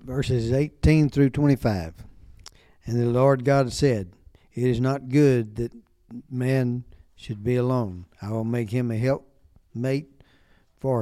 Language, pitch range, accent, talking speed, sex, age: English, 110-130 Hz, American, 135 wpm, male, 60-79